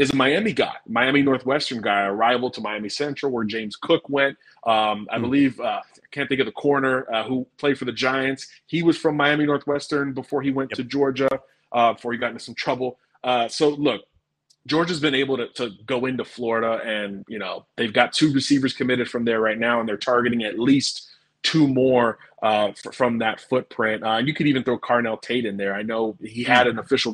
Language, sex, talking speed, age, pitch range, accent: English, male, 220 wpm, 30-49, 115-140 Hz, American